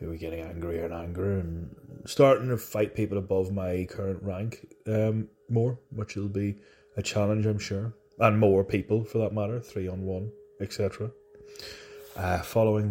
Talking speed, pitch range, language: 170 wpm, 95-120 Hz, English